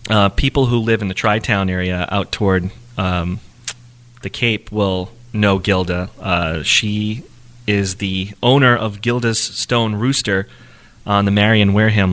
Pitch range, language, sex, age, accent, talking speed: 100-120 Hz, English, male, 30-49, American, 145 wpm